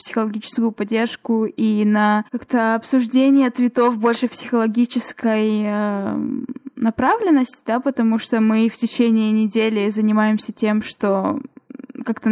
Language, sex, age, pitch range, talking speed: Russian, female, 20-39, 215-250 Hz, 105 wpm